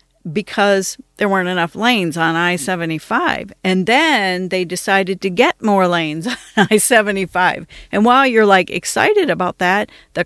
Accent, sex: American, female